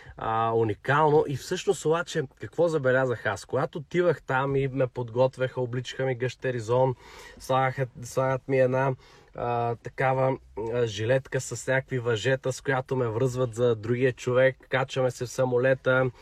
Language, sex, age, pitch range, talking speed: Bulgarian, male, 20-39, 125-140 Hz, 145 wpm